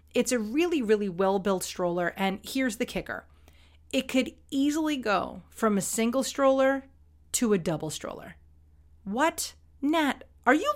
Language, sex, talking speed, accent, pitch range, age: English, female, 145 wpm, American, 185-260 Hz, 30-49